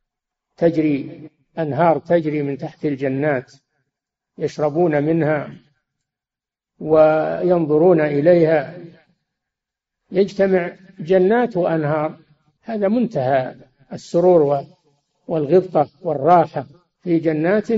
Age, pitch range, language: 60-79, 145-185 Hz, Arabic